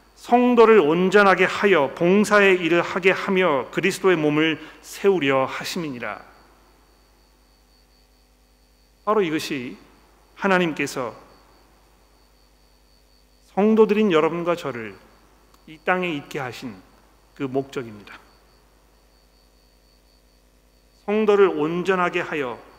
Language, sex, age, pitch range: Korean, male, 40-59, 120-170 Hz